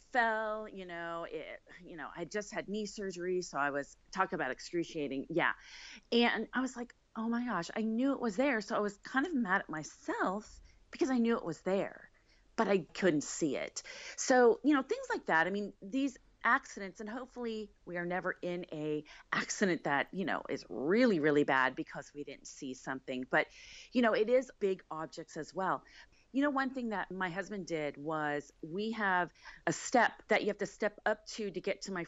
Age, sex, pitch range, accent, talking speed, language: 30-49, female, 160-230 Hz, American, 210 wpm, English